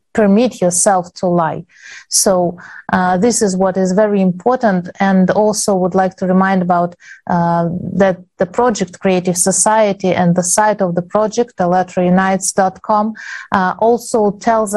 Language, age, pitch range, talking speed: English, 30-49, 180-205 Hz, 140 wpm